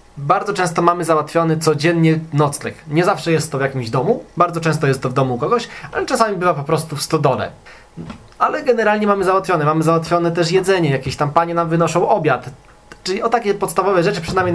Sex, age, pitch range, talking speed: male, 20-39, 150-180 Hz, 200 wpm